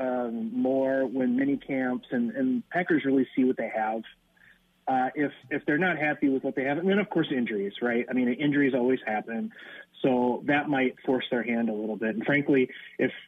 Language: English